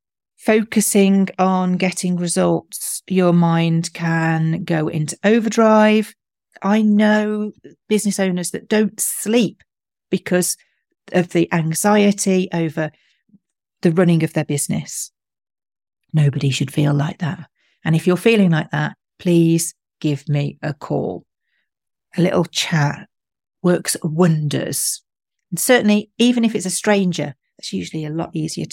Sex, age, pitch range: female, 40-59, 170-215 Hz